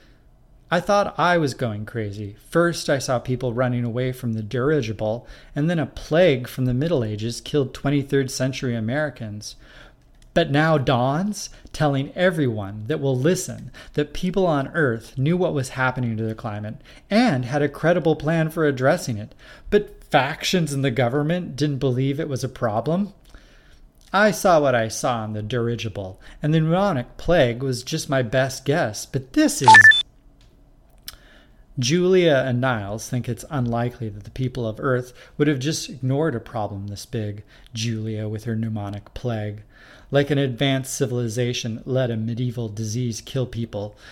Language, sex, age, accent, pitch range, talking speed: English, male, 30-49, American, 115-145 Hz, 160 wpm